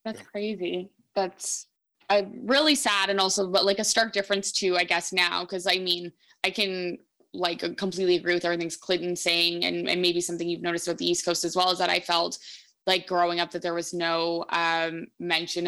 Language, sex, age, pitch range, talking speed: English, female, 20-39, 170-195 Hz, 205 wpm